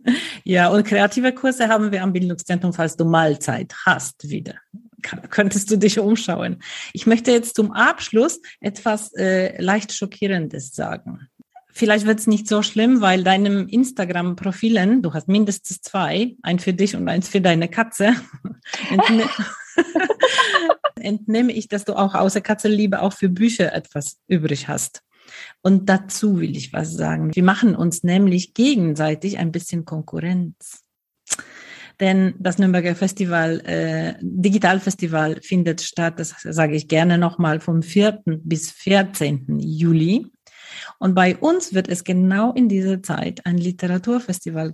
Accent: German